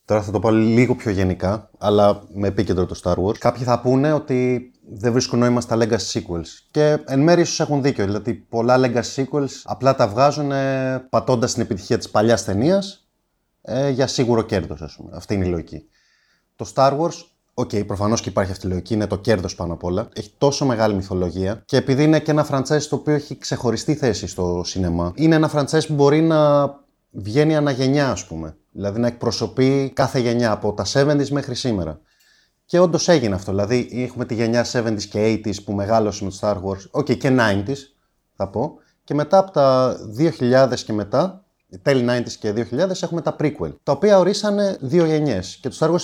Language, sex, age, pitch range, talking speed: Greek, male, 30-49, 105-140 Hz, 195 wpm